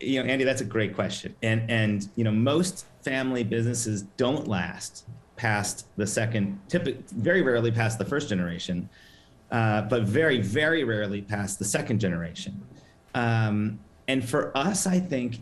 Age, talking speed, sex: 40-59, 155 wpm, male